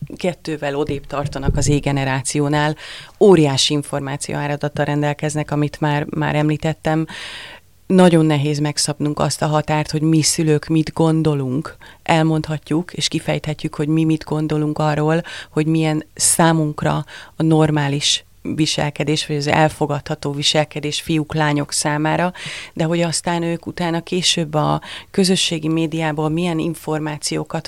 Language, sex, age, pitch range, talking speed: Hungarian, female, 30-49, 145-165 Hz, 120 wpm